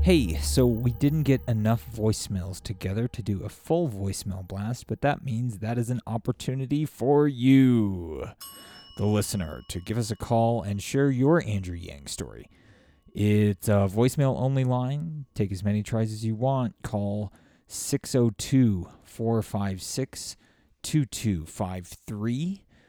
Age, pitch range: 30-49, 95-120 Hz